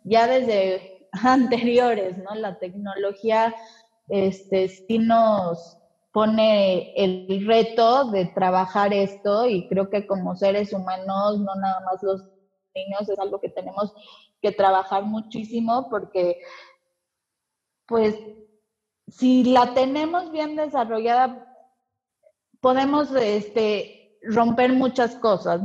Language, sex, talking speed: Spanish, female, 100 wpm